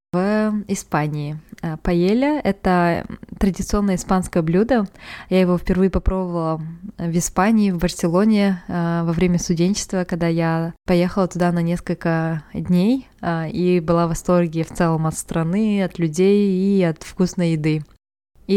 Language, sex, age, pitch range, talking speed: Russian, female, 20-39, 170-195 Hz, 135 wpm